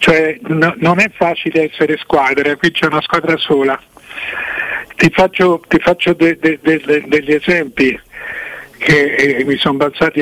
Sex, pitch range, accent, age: male, 150-185 Hz, native, 50-69